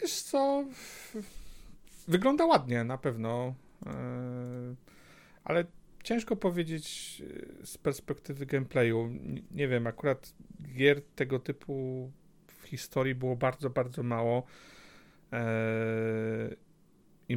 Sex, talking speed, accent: male, 85 wpm, native